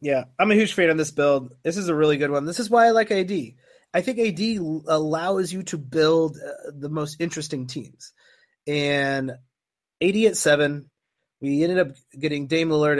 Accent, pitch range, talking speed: American, 145-190 Hz, 195 wpm